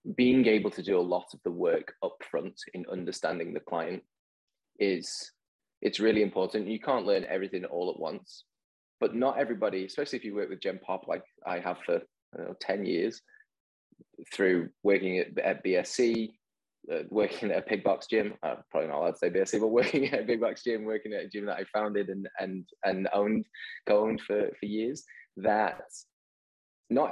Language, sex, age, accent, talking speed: English, male, 20-39, British, 190 wpm